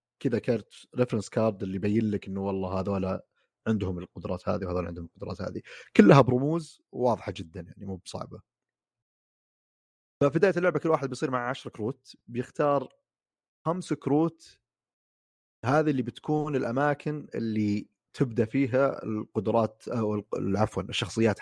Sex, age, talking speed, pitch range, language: male, 30-49, 130 wpm, 95-135 Hz, Arabic